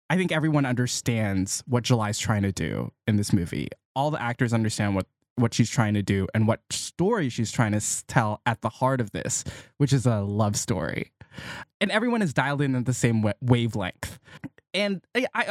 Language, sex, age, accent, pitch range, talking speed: English, male, 20-39, American, 110-135 Hz, 205 wpm